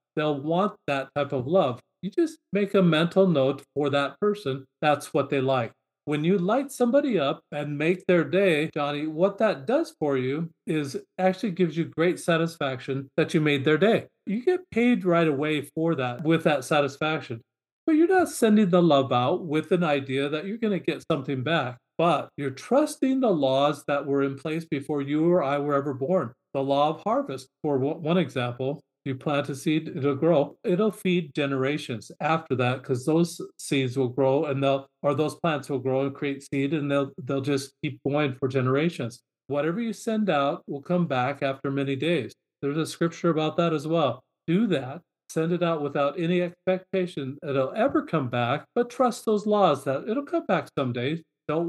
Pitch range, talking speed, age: 140-180 Hz, 195 wpm, 40-59